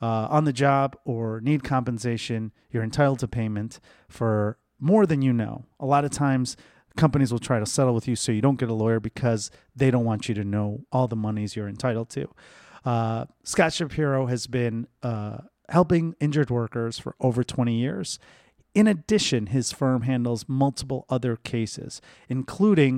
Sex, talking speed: male, 180 wpm